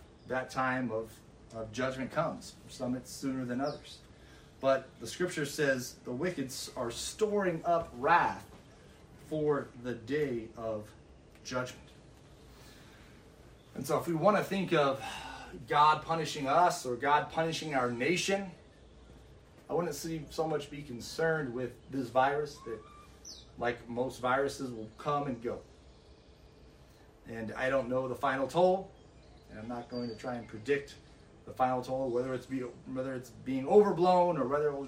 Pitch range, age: 115-145 Hz, 30-49